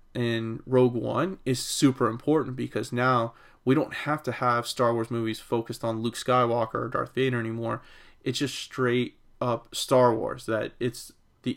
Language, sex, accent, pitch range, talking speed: English, male, American, 115-130 Hz, 170 wpm